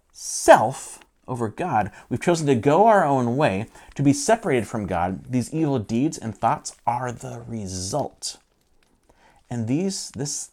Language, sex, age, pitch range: English, male, 40-59, 105-145 Hz